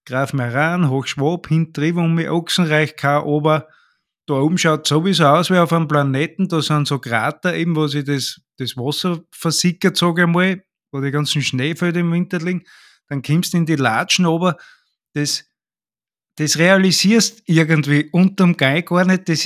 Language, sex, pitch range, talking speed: German, male, 145-185 Hz, 180 wpm